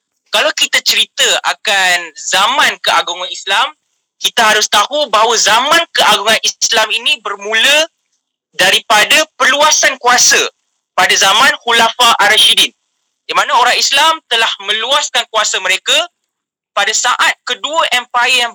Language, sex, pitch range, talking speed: Malay, male, 210-280 Hz, 115 wpm